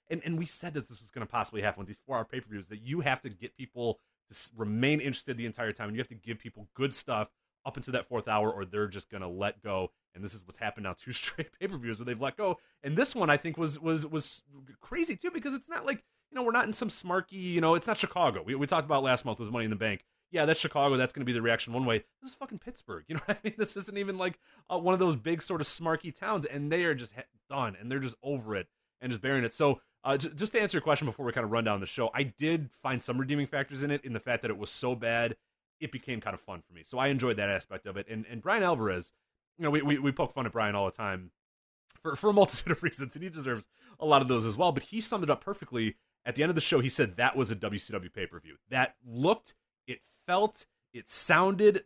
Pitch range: 110-165 Hz